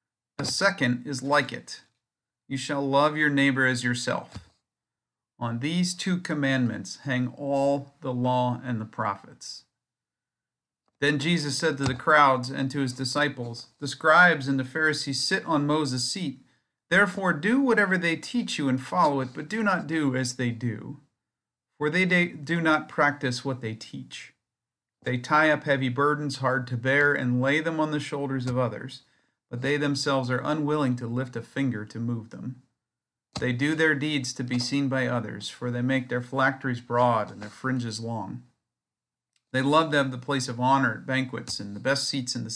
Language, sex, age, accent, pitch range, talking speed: English, male, 40-59, American, 125-150 Hz, 180 wpm